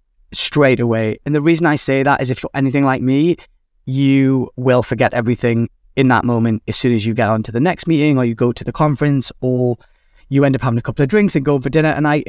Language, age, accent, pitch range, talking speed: English, 20-39, British, 115-145 Hz, 255 wpm